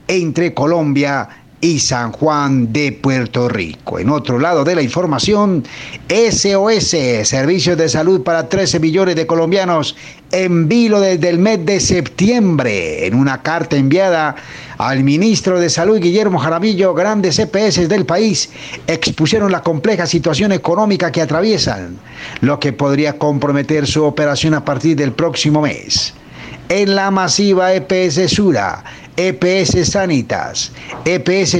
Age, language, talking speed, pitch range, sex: 50-69, Spanish, 135 wpm, 150-195 Hz, male